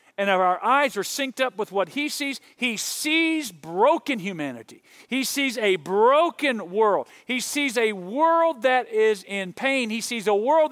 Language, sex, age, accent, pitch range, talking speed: English, male, 50-69, American, 200-275 Hz, 175 wpm